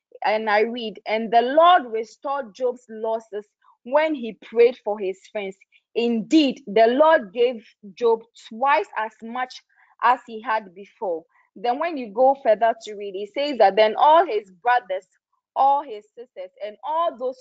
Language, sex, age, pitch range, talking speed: English, female, 20-39, 210-290 Hz, 160 wpm